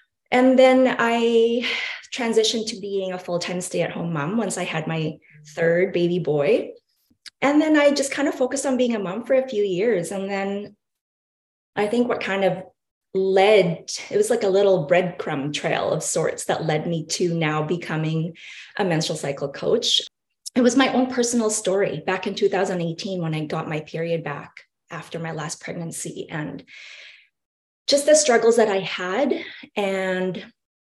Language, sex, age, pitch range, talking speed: English, female, 20-39, 165-235 Hz, 165 wpm